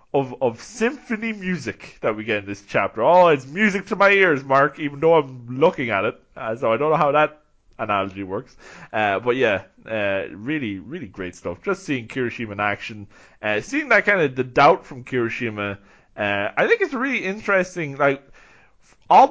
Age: 20-39